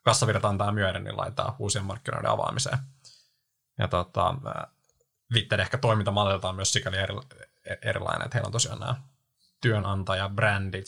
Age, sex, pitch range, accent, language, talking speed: 20-39, male, 100-125 Hz, native, Finnish, 115 wpm